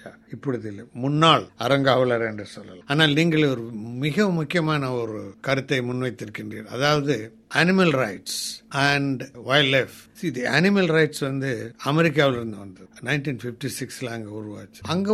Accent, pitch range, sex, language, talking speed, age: native, 120-160 Hz, male, Tamil, 40 wpm, 60-79